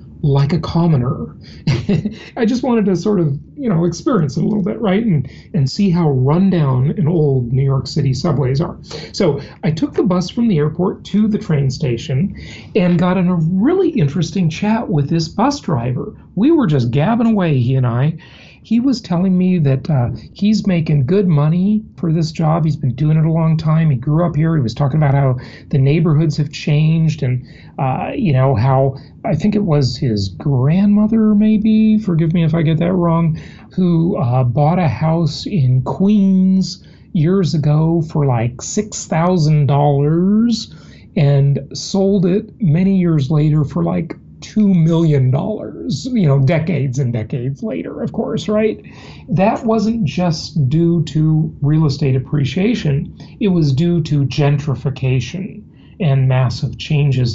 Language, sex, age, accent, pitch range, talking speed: English, male, 40-59, American, 140-190 Hz, 165 wpm